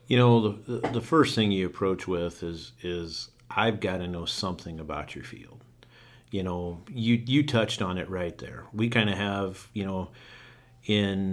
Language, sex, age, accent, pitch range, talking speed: English, male, 50-69, American, 95-115 Hz, 185 wpm